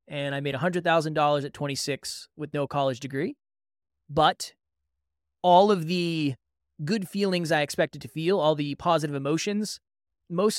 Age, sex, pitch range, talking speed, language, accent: 20-39, male, 135-170 Hz, 140 wpm, English, American